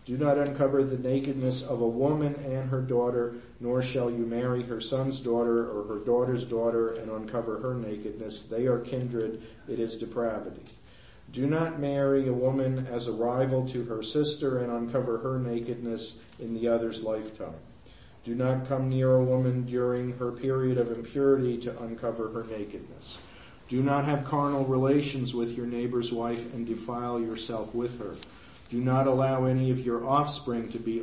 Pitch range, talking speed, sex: 115-130 Hz, 170 wpm, male